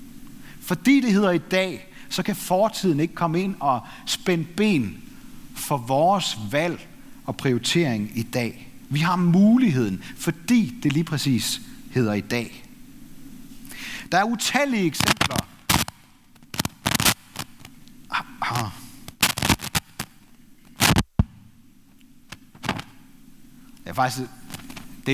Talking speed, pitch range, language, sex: 85 wpm, 140-215 Hz, Danish, male